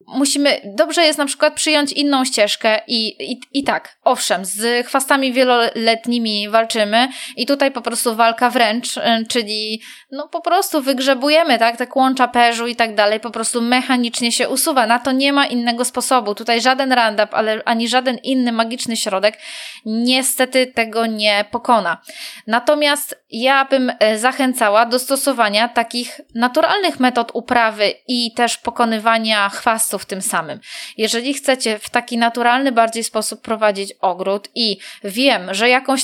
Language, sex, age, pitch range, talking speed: Polish, female, 20-39, 220-265 Hz, 150 wpm